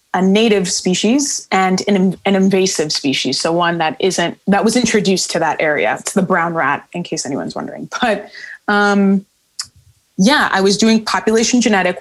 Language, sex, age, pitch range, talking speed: English, female, 20-39, 180-215 Hz, 170 wpm